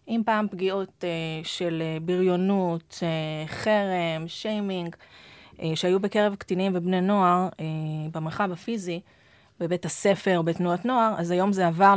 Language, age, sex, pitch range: Hebrew, 20-39, female, 175-200 Hz